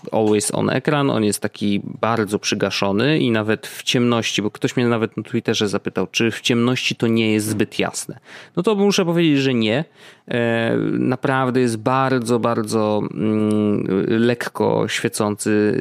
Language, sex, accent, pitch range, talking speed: Polish, male, native, 105-140 Hz, 150 wpm